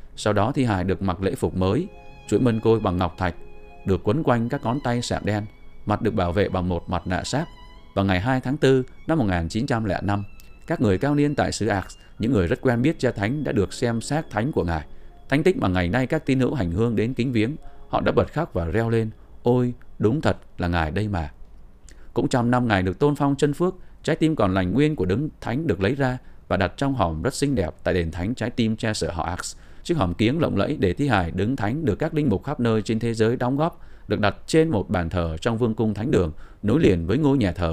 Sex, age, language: male, 20-39, Vietnamese